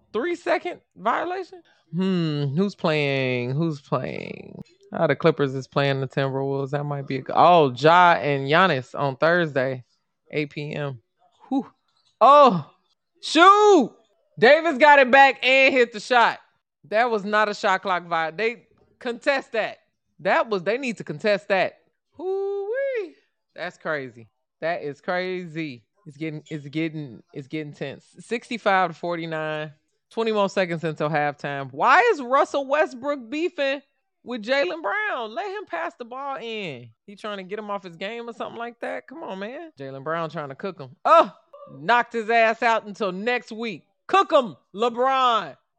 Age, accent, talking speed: 20-39, American, 160 wpm